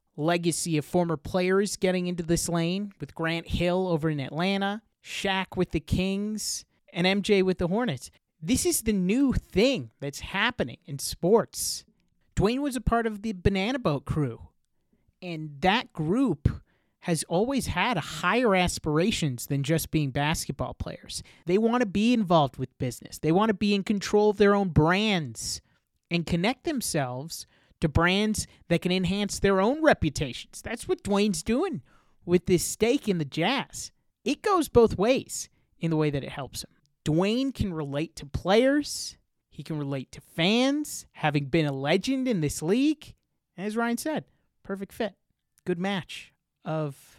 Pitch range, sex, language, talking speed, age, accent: 160-210 Hz, male, English, 165 wpm, 30-49, American